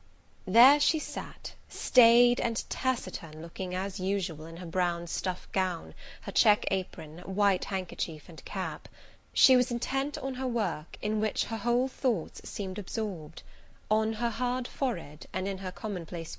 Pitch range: 170-225 Hz